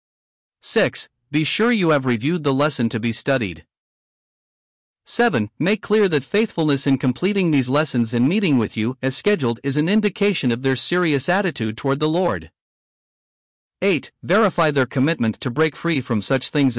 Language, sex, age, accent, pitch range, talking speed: English, male, 50-69, American, 125-175 Hz, 165 wpm